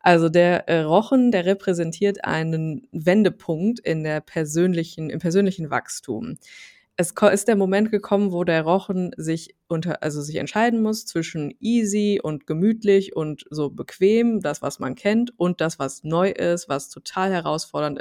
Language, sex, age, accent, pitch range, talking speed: German, female, 20-39, German, 155-195 Hz, 155 wpm